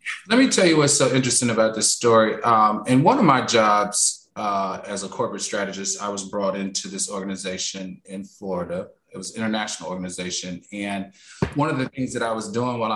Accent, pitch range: American, 105-135 Hz